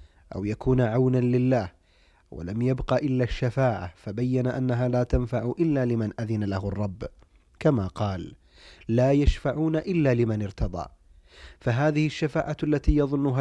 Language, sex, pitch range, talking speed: Arabic, male, 110-140 Hz, 125 wpm